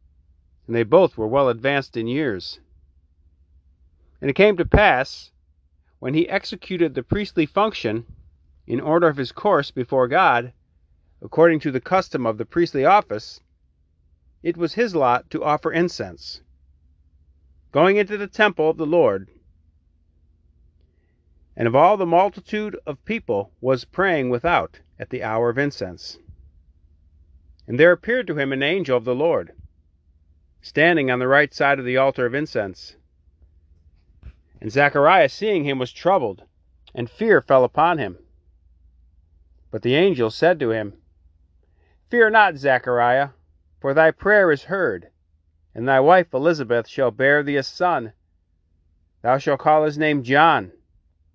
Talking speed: 145 wpm